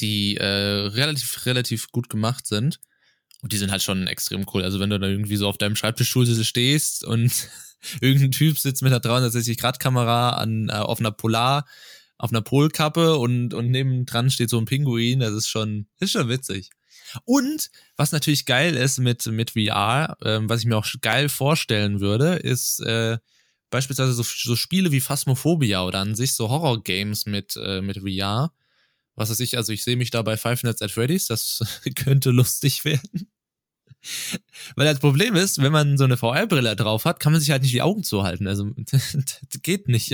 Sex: male